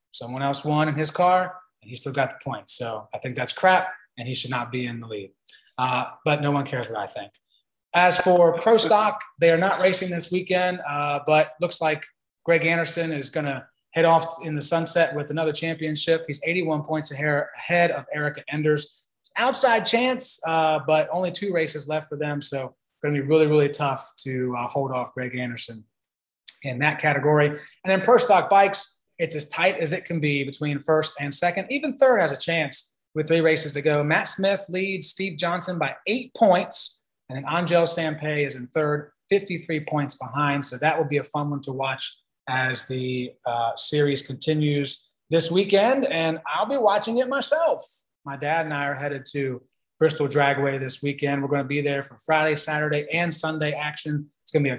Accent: American